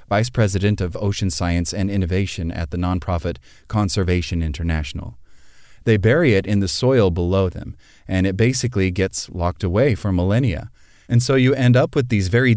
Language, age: English, 30-49